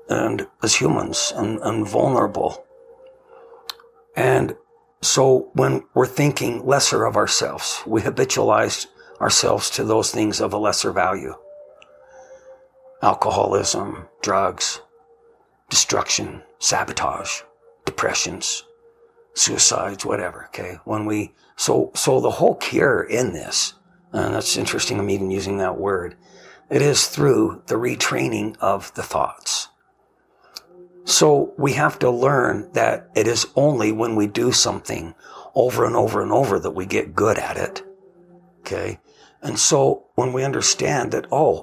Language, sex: English, male